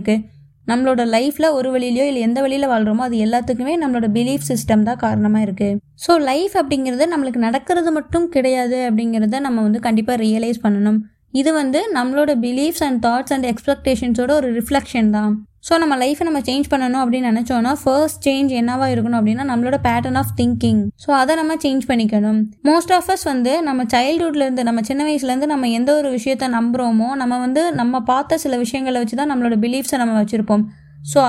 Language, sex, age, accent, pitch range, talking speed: Tamil, female, 20-39, native, 225-275 Hz, 130 wpm